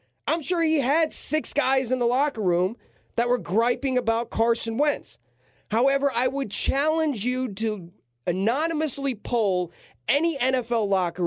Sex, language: male, English